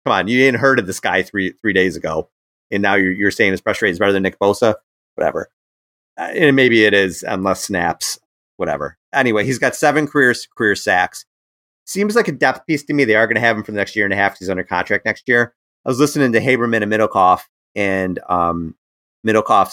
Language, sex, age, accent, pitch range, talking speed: English, male, 30-49, American, 85-115 Hz, 230 wpm